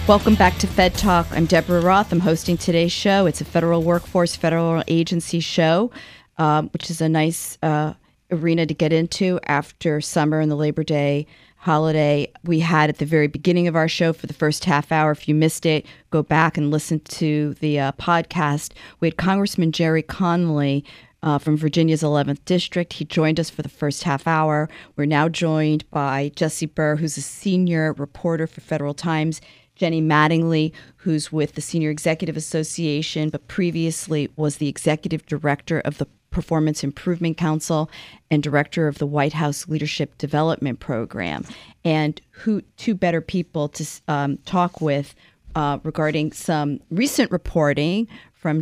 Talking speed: 170 wpm